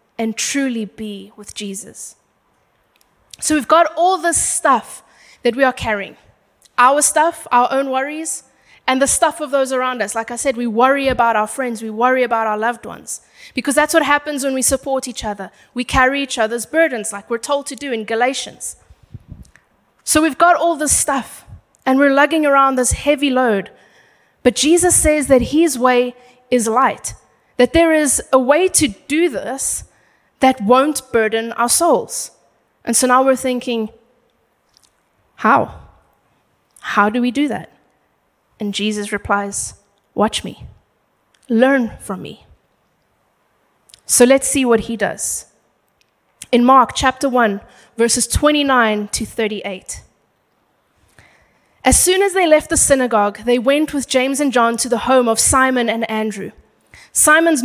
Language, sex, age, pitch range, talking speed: English, female, 20-39, 225-280 Hz, 155 wpm